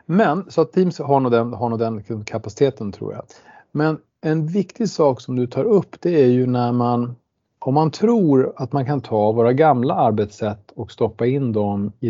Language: Swedish